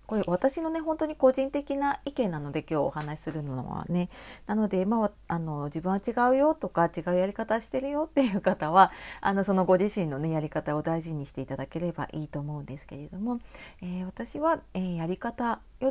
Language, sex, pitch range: Japanese, female, 160-235 Hz